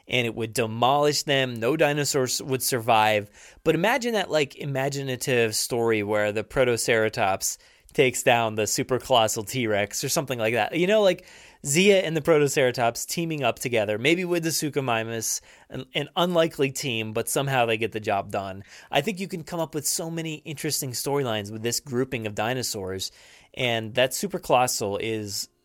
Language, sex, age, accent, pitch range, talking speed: English, male, 20-39, American, 115-150 Hz, 175 wpm